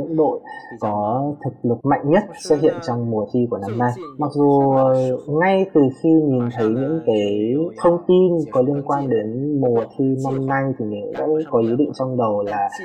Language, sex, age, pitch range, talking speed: Vietnamese, male, 20-39, 110-145 Hz, 195 wpm